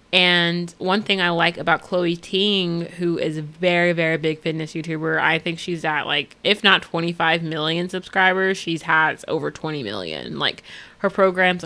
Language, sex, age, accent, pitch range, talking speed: English, female, 20-39, American, 165-195 Hz, 175 wpm